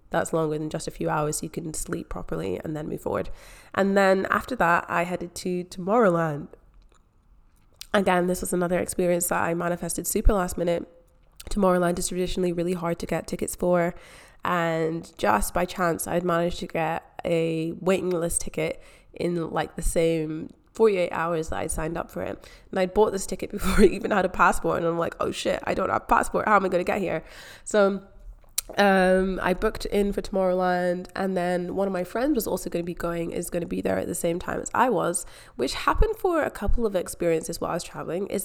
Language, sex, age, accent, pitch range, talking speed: English, female, 20-39, British, 170-195 Hz, 215 wpm